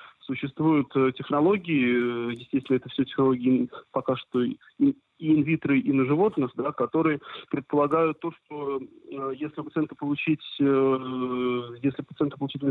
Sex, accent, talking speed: male, native, 105 wpm